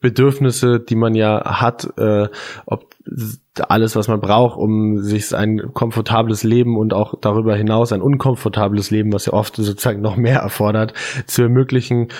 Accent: German